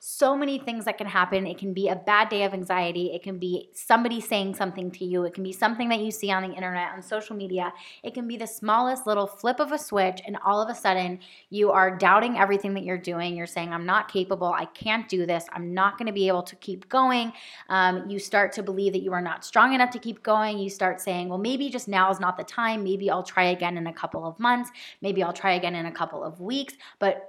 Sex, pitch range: female, 185-215 Hz